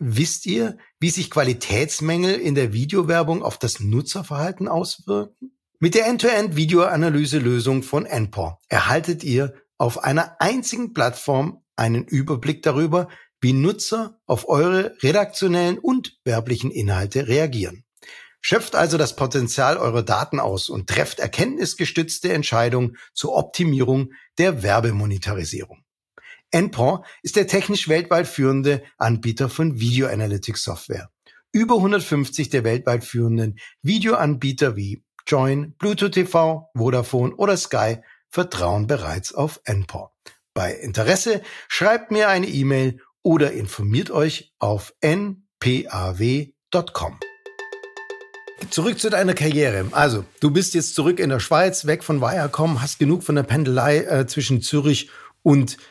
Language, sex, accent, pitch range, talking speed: German, male, German, 125-180 Hz, 125 wpm